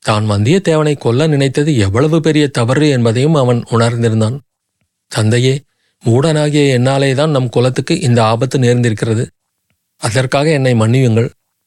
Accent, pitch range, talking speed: native, 115-150 Hz, 115 wpm